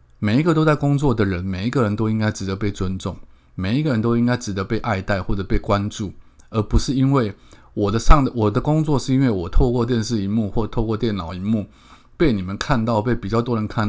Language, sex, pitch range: Chinese, male, 100-120 Hz